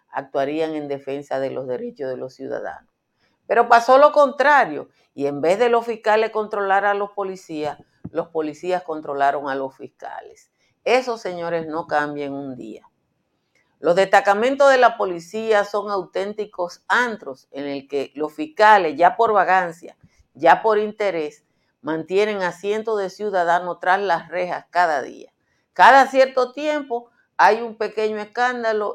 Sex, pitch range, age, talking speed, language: female, 155-220 Hz, 50-69, 145 wpm, Spanish